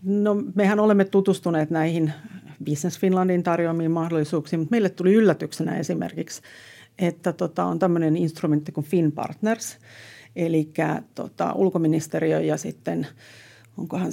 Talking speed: 115 wpm